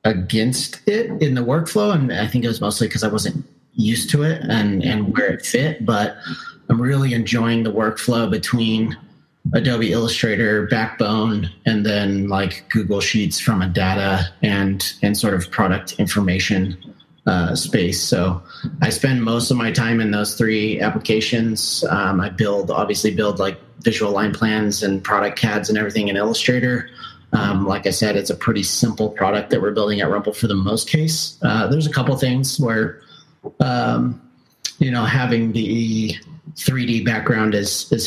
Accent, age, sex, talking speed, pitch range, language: American, 30-49, male, 170 wpm, 100-120 Hz, English